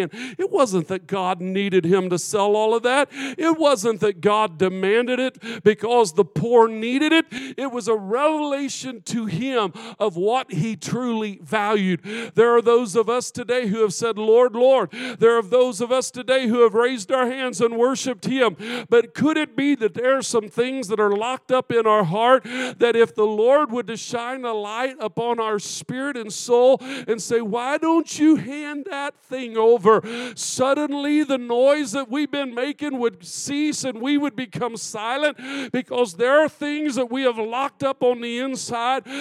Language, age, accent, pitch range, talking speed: English, 50-69, American, 230-275 Hz, 190 wpm